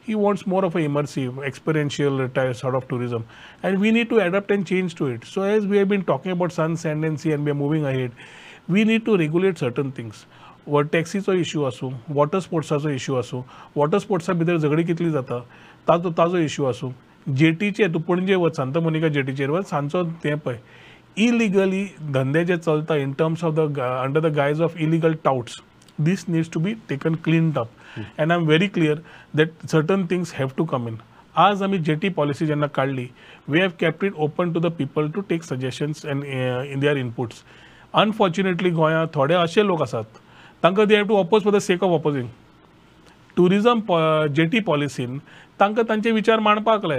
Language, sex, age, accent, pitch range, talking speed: English, male, 40-59, Indian, 140-185 Hz, 185 wpm